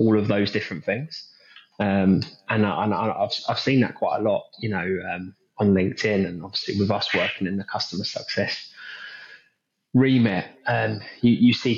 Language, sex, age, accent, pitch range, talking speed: English, male, 20-39, British, 95-110 Hz, 180 wpm